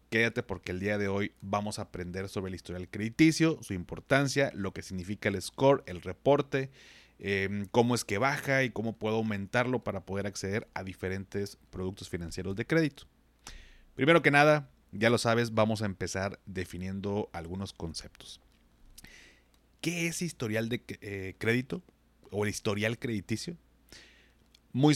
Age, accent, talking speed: 30-49, Mexican, 150 wpm